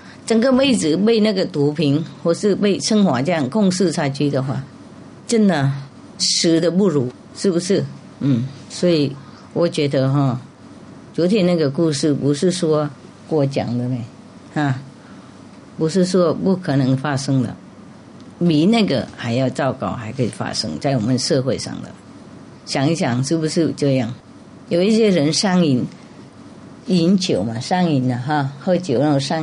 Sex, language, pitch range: female, English, 135-185 Hz